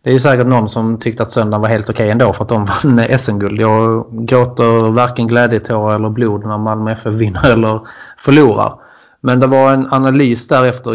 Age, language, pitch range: 20-39, Swedish, 110-120 Hz